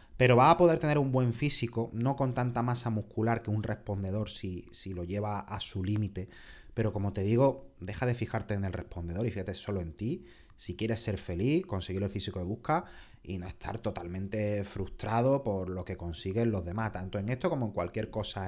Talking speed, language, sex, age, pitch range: 210 wpm, Spanish, male, 30-49, 95-120 Hz